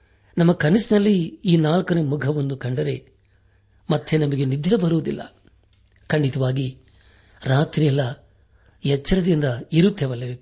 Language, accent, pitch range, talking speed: Kannada, native, 100-155 Hz, 80 wpm